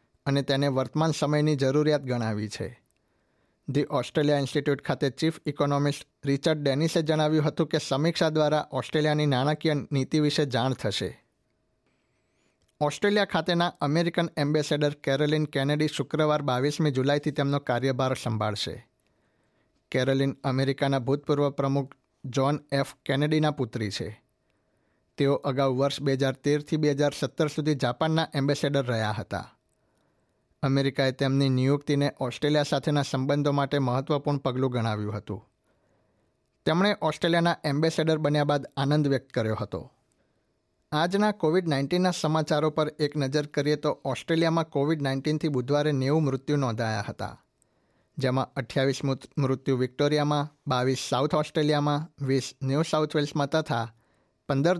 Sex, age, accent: male, 60-79, native